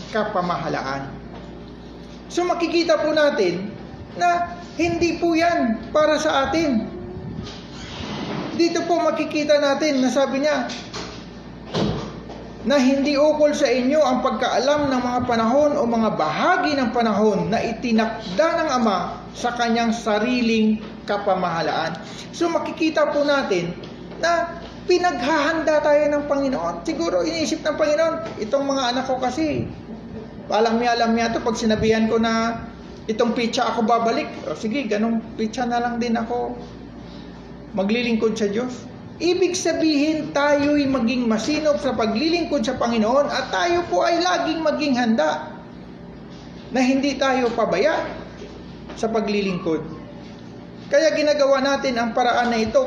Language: English